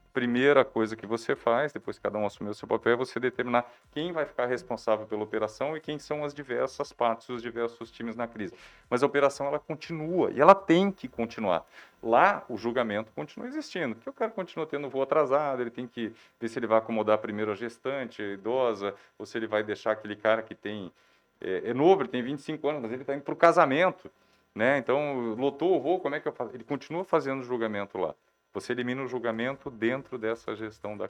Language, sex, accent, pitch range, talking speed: Portuguese, male, Brazilian, 105-135 Hz, 220 wpm